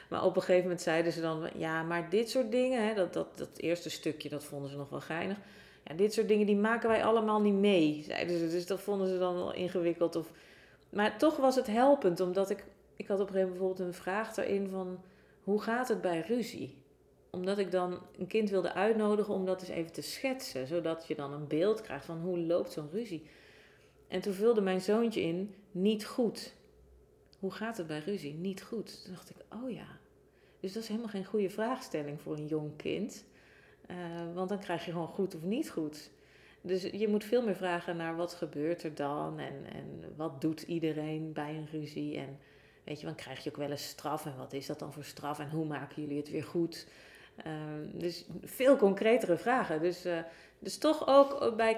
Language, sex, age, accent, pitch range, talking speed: Dutch, female, 40-59, Dutch, 160-210 Hz, 215 wpm